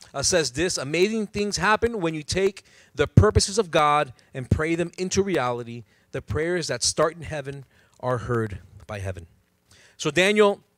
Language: English